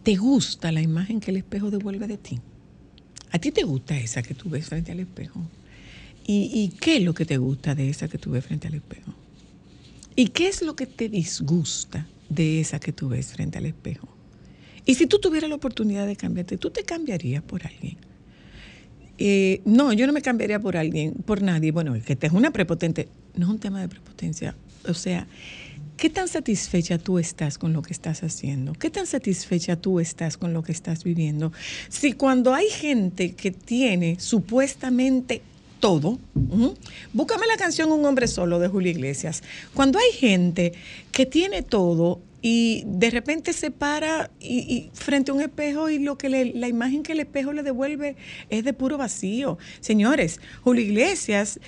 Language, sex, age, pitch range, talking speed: Spanish, female, 50-69, 165-255 Hz, 180 wpm